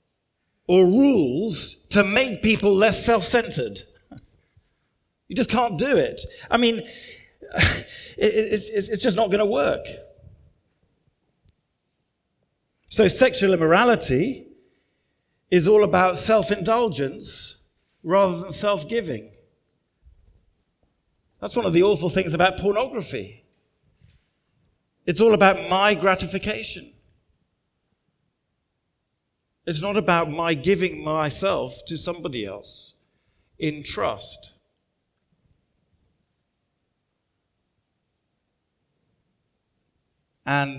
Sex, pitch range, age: male, 140-215 Hz, 40-59